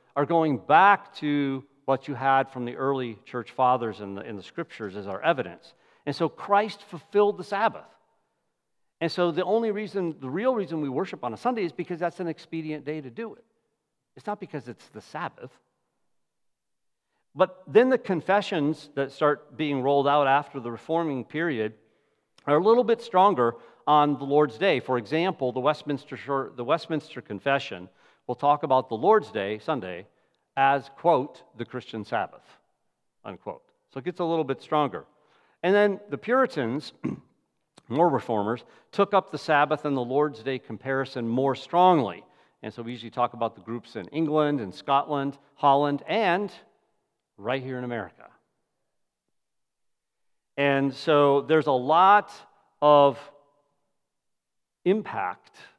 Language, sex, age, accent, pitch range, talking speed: English, male, 50-69, American, 130-175 Hz, 155 wpm